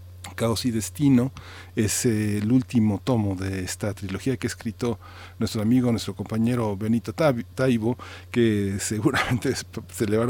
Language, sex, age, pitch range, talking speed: Spanish, male, 40-59, 100-120 Hz, 140 wpm